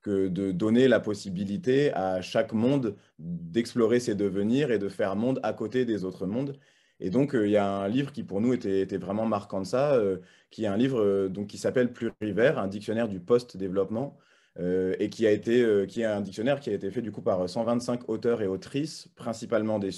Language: French